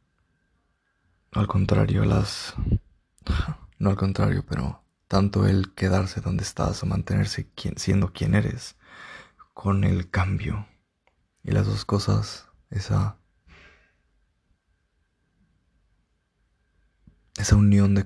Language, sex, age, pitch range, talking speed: Spanish, male, 20-39, 85-105 Hz, 95 wpm